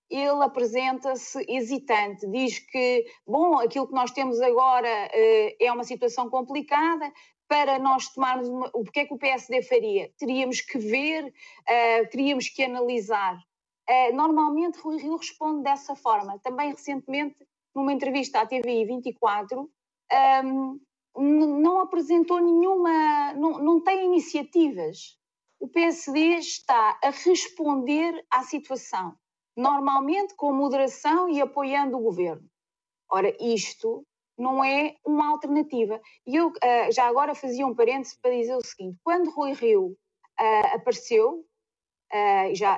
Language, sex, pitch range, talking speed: Portuguese, female, 235-325 Hz, 120 wpm